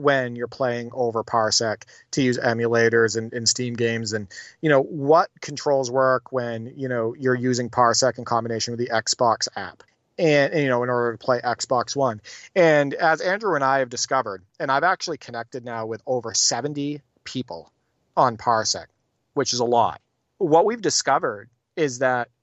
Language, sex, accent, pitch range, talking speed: English, male, American, 120-140 Hz, 180 wpm